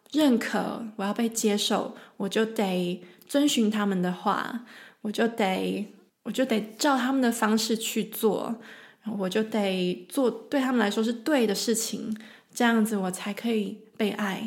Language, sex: Chinese, female